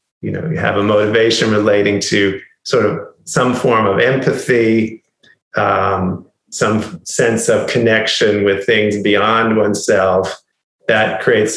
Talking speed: 130 wpm